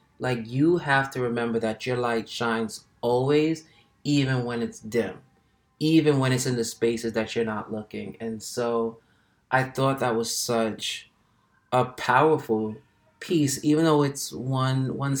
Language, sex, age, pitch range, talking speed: English, male, 20-39, 110-125 Hz, 155 wpm